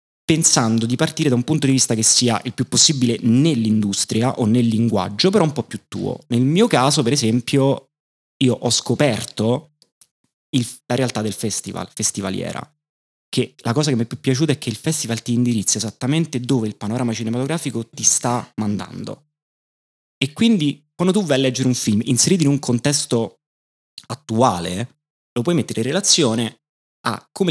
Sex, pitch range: male, 110-140 Hz